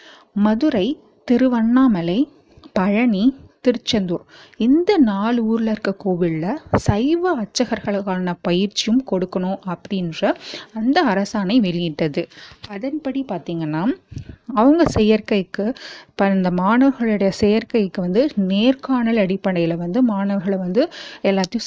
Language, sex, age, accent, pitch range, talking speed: Tamil, female, 30-49, native, 190-250 Hz, 85 wpm